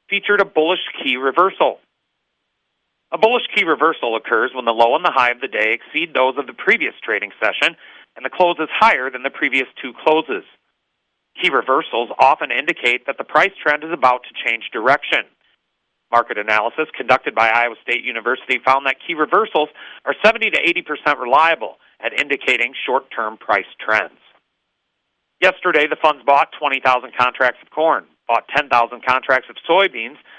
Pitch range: 125-160 Hz